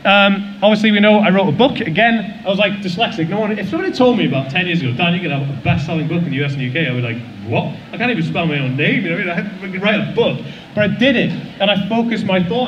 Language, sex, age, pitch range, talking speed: English, male, 30-49, 145-210 Hz, 310 wpm